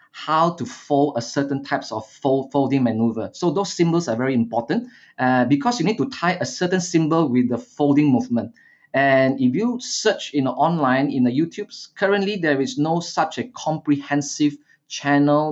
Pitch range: 125-160 Hz